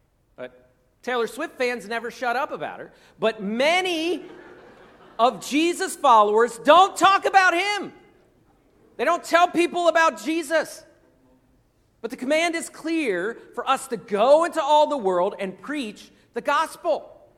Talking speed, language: 140 wpm, English